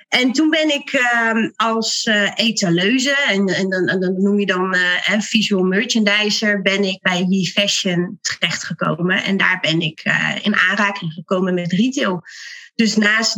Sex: female